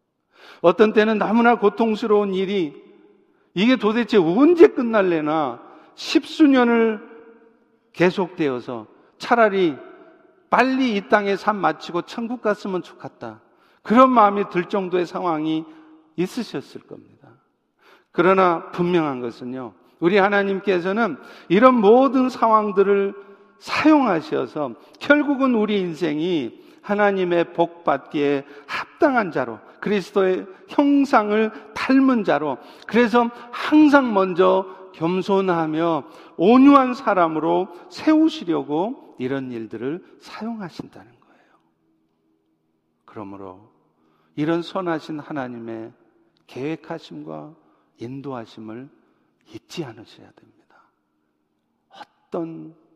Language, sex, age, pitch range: Korean, male, 50-69, 155-235 Hz